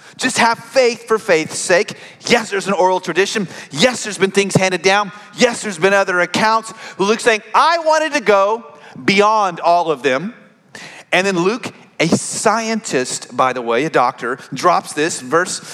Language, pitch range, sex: English, 170-225 Hz, male